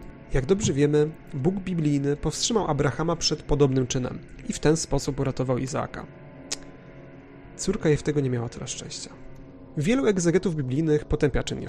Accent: native